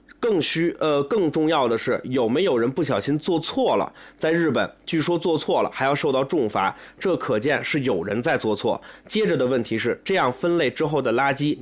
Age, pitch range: 20-39, 120-165 Hz